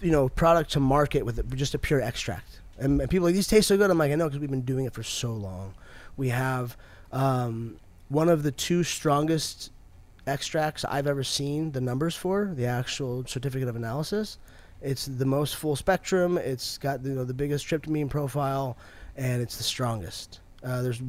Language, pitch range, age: English, 115-155 Hz, 20-39